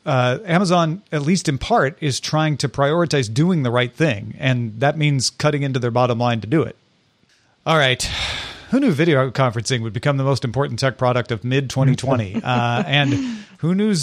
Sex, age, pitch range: male, 40-59, 130-175 Hz